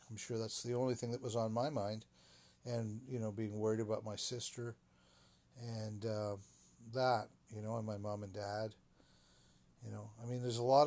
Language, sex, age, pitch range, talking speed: English, male, 50-69, 105-125 Hz, 200 wpm